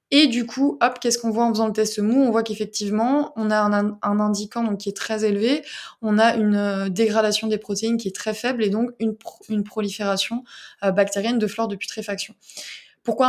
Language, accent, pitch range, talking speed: French, French, 200-225 Hz, 215 wpm